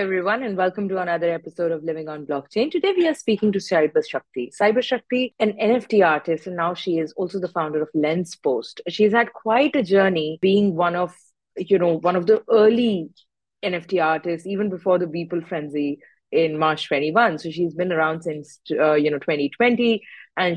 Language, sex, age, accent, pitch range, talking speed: English, female, 30-49, Indian, 160-205 Hz, 195 wpm